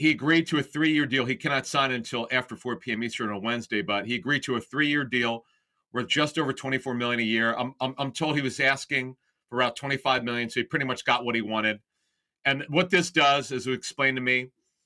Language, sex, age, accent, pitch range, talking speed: English, male, 40-59, American, 120-150 Hz, 235 wpm